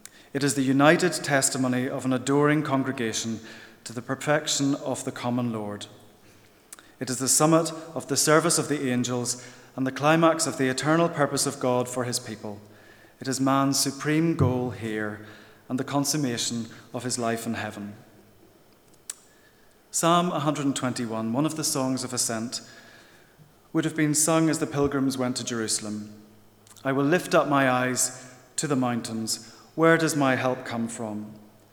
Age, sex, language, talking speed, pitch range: 30-49, male, English, 160 wpm, 110-140 Hz